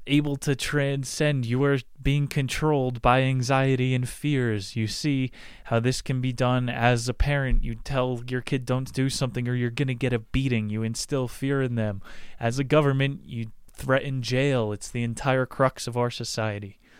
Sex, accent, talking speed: male, American, 185 wpm